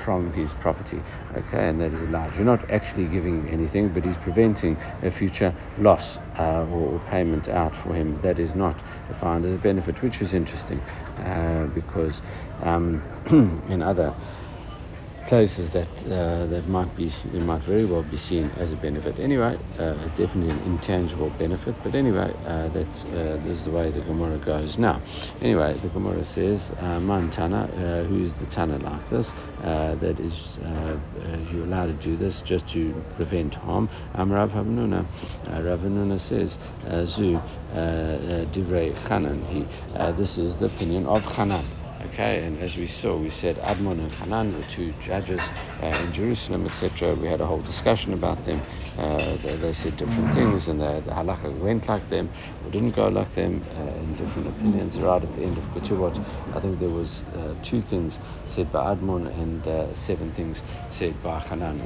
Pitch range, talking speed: 80-95 Hz, 185 wpm